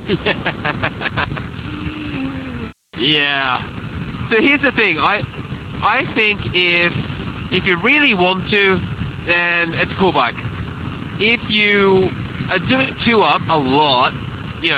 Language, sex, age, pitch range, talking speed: English, male, 30-49, 145-180 Hz, 115 wpm